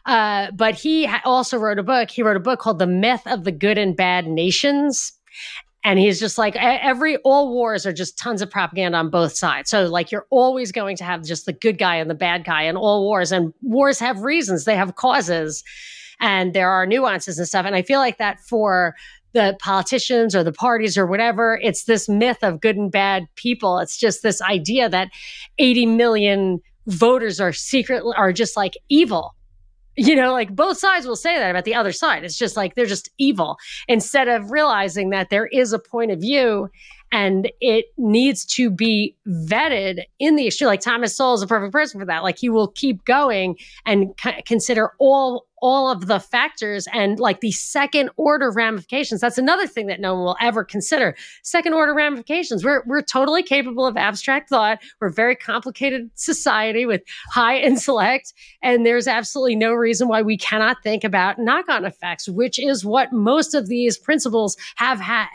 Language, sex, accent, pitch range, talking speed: English, female, American, 195-260 Hz, 195 wpm